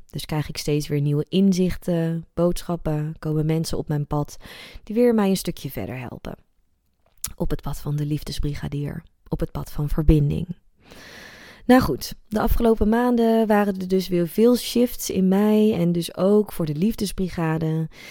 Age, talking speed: 20-39, 165 wpm